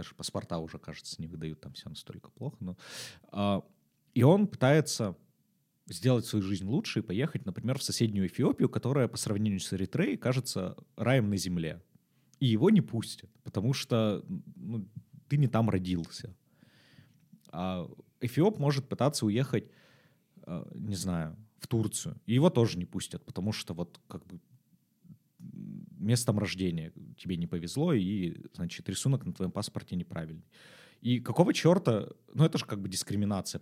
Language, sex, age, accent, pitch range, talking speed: Russian, male, 30-49, native, 95-135 Hz, 150 wpm